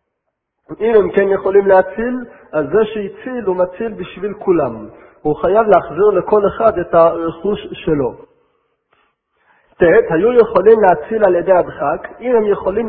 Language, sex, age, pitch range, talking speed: Hebrew, male, 50-69, 170-230 Hz, 140 wpm